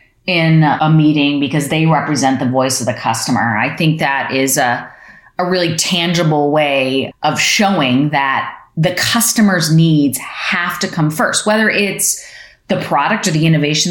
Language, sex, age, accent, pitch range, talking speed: English, female, 30-49, American, 155-195 Hz, 160 wpm